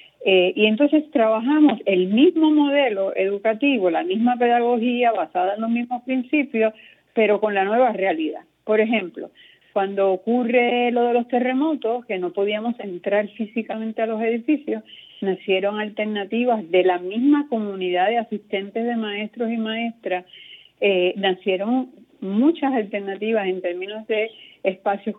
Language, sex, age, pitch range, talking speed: Spanish, female, 50-69, 185-235 Hz, 135 wpm